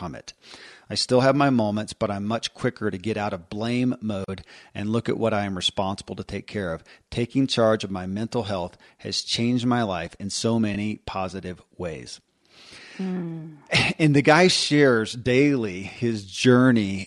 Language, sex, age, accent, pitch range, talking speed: English, male, 40-59, American, 105-125 Hz, 170 wpm